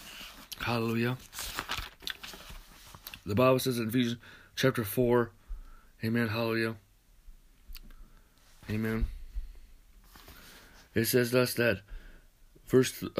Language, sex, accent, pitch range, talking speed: English, male, American, 115-185 Hz, 75 wpm